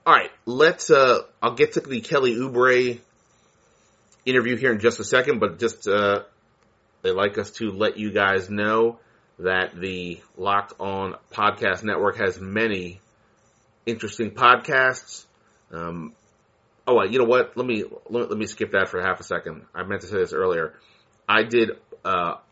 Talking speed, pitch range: 165 wpm, 105-125 Hz